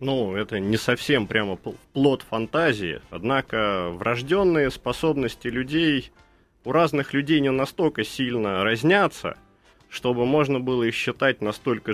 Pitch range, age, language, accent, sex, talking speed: 100-140 Hz, 30-49, Russian, native, male, 120 wpm